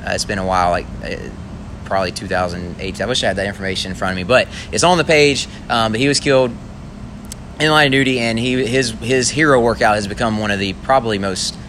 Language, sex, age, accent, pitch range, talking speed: English, male, 20-39, American, 95-115 Hz, 235 wpm